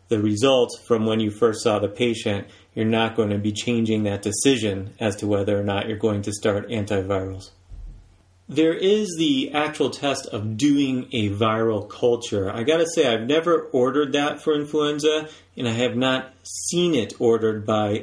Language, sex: English, male